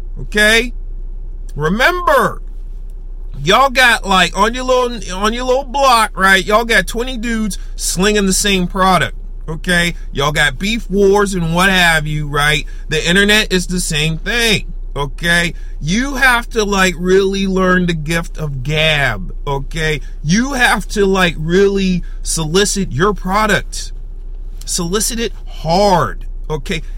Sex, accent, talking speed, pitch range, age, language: male, American, 135 wpm, 180-255 Hz, 40-59, English